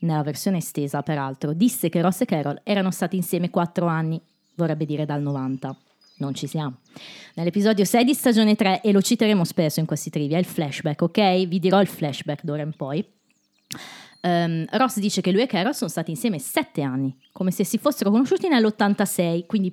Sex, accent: female, native